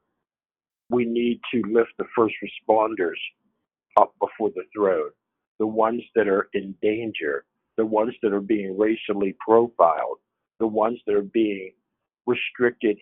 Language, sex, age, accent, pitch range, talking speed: English, male, 50-69, American, 105-120 Hz, 140 wpm